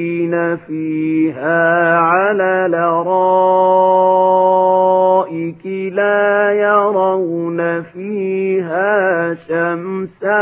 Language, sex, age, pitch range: Arabic, male, 40-59, 170-205 Hz